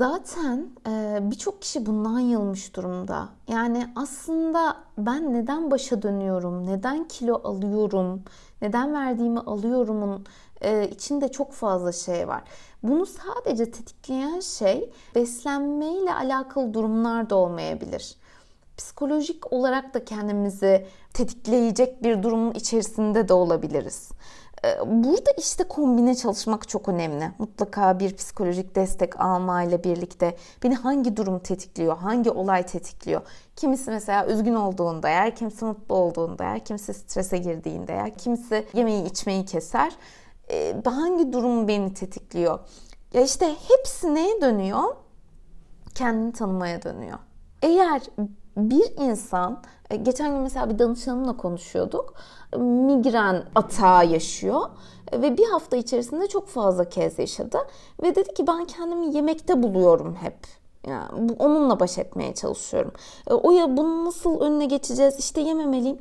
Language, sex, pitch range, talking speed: Turkish, female, 200-285 Hz, 125 wpm